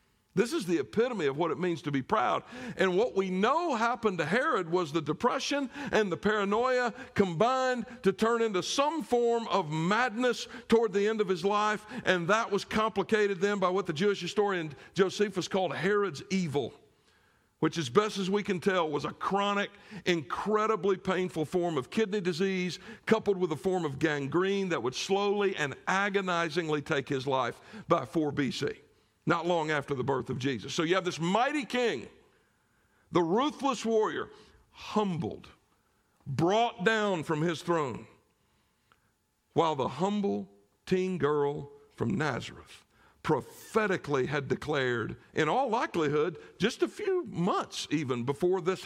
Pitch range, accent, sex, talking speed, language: 160-215 Hz, American, male, 155 wpm, English